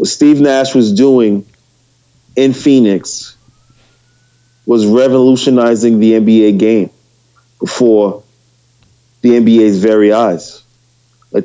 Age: 30-49